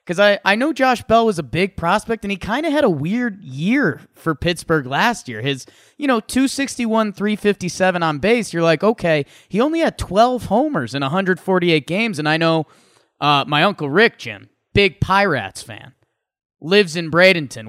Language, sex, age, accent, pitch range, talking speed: English, male, 20-39, American, 150-210 Hz, 185 wpm